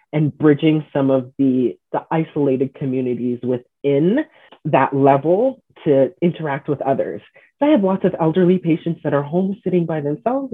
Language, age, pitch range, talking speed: English, 30-49, 135-180 Hz, 155 wpm